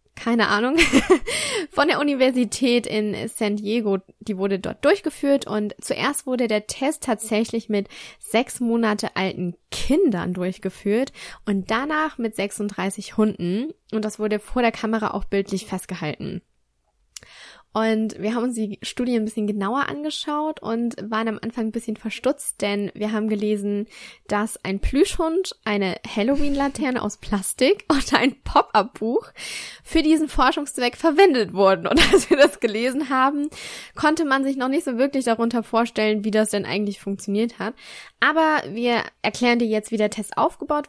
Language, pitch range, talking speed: German, 205-265 Hz, 155 wpm